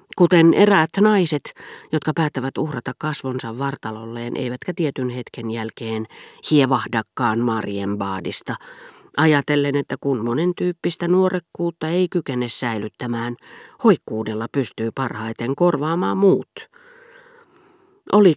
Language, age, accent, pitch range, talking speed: Finnish, 40-59, native, 120-175 Hz, 100 wpm